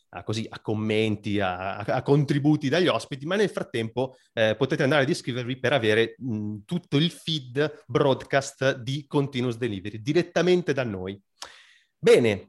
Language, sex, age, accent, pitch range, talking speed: Italian, male, 30-49, native, 110-155 Hz, 150 wpm